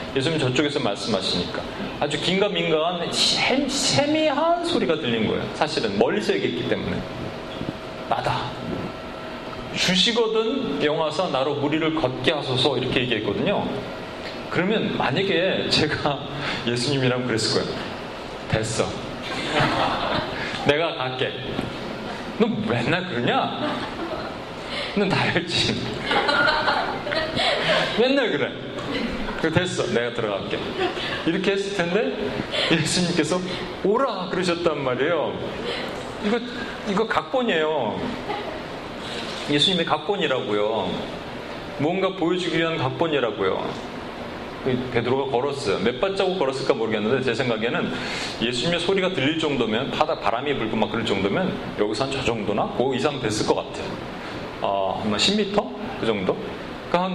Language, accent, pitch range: Korean, native, 135-200 Hz